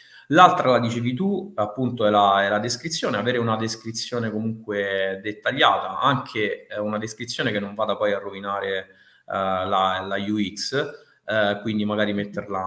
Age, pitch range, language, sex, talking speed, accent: 20-39, 100-120 Hz, Italian, male, 145 wpm, native